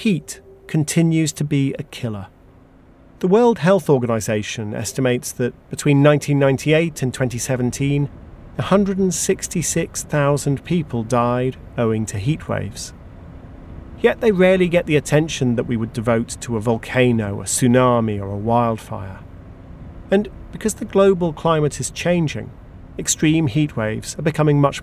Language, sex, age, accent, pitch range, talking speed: English, male, 40-59, British, 110-165 Hz, 130 wpm